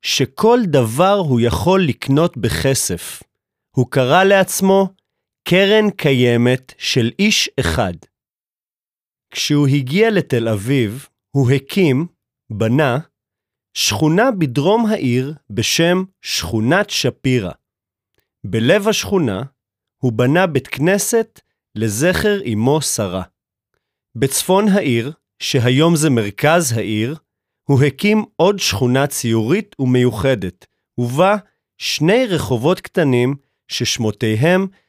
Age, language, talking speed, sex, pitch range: 40-59, Hebrew, 90 wpm, male, 115-180 Hz